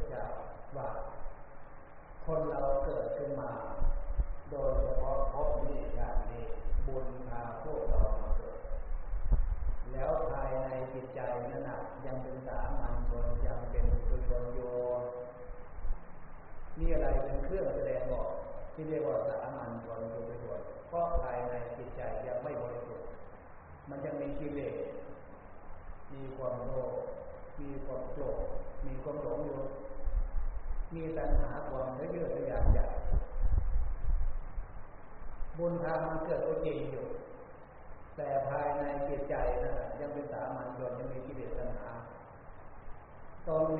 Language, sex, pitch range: Thai, male, 120-170 Hz